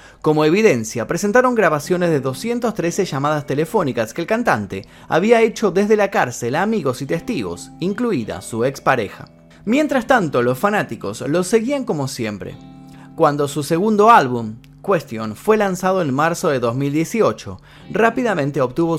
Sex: male